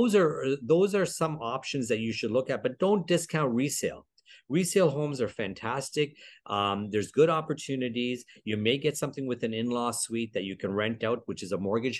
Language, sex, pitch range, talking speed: English, male, 100-135 Hz, 200 wpm